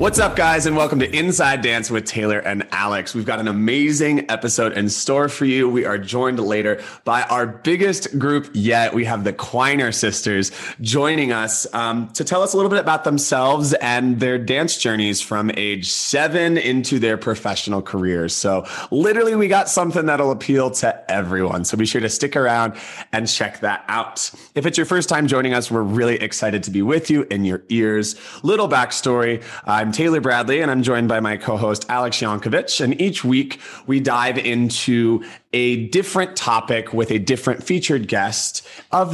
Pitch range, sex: 110-145 Hz, male